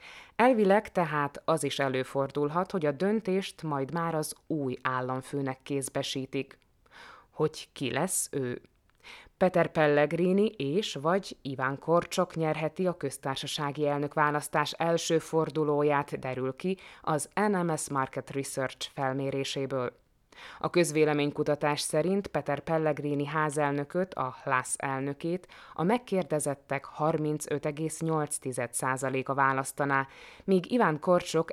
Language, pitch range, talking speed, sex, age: Hungarian, 140-165 Hz, 100 wpm, female, 20-39